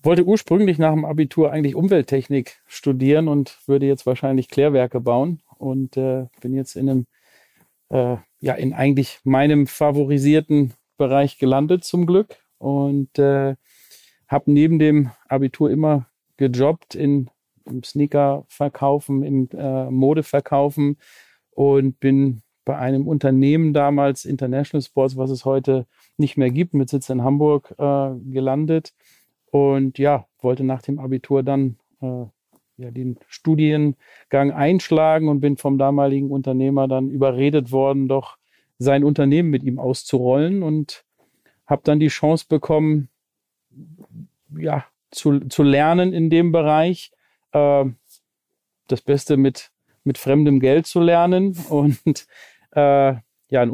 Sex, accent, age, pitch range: male, German, 40-59, 135-150 Hz